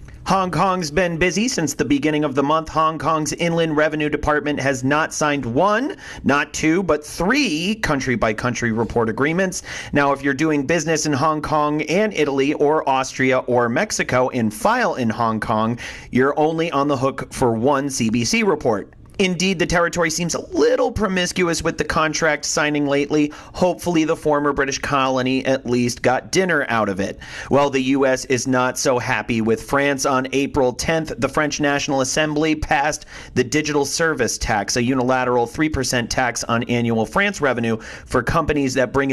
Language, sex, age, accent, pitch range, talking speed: English, male, 40-59, American, 125-160 Hz, 170 wpm